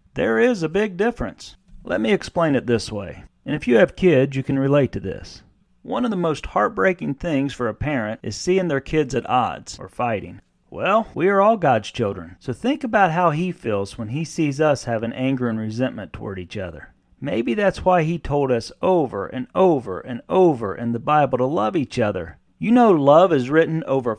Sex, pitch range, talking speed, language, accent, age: male, 110-160 Hz, 210 wpm, English, American, 40-59